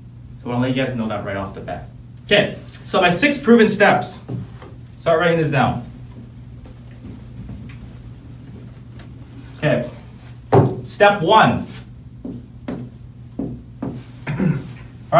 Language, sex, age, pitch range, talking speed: English, male, 30-49, 120-165 Hz, 100 wpm